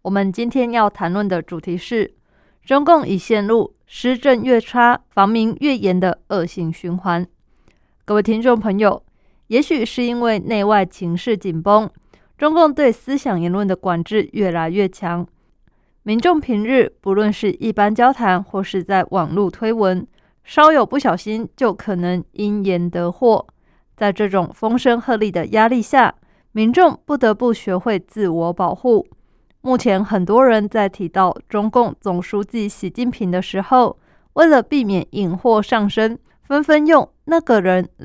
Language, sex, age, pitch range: Chinese, female, 20-39, 195-245 Hz